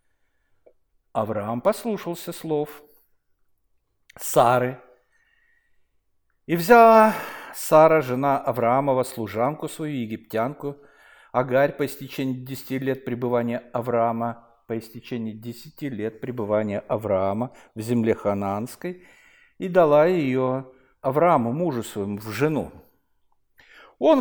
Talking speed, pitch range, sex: 90 wpm, 120-175 Hz, male